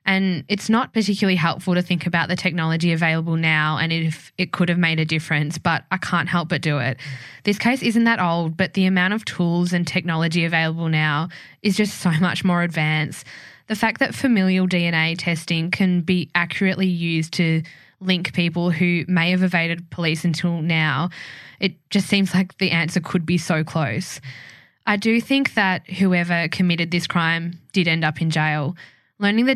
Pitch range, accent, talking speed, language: 160-185 Hz, Australian, 185 wpm, English